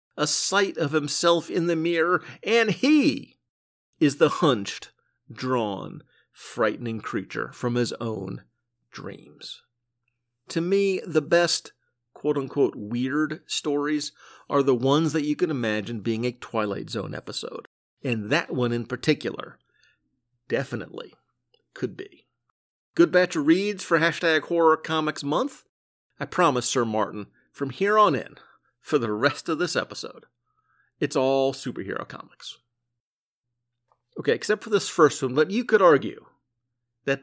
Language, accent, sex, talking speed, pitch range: English, American, male, 135 wpm, 120-180 Hz